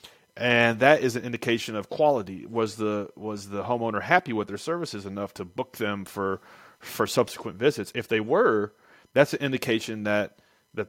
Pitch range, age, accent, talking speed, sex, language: 100-125 Hz, 30-49, American, 175 wpm, male, English